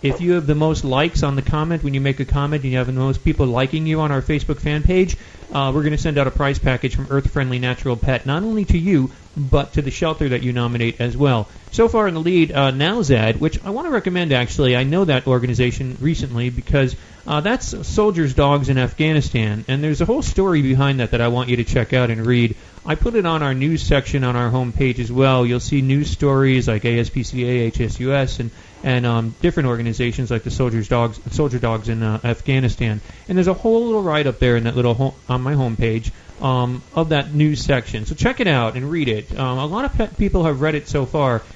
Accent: American